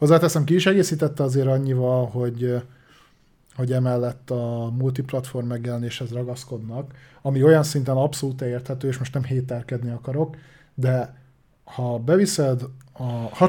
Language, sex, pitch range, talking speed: Hungarian, male, 125-150 Hz, 115 wpm